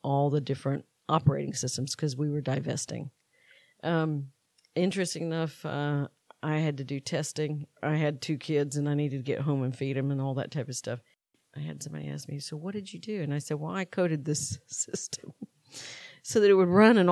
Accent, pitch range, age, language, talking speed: American, 140-165 Hz, 50-69, English, 215 wpm